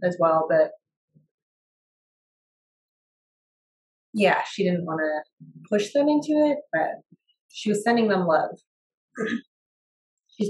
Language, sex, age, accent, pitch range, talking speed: English, female, 30-49, American, 170-210 Hz, 110 wpm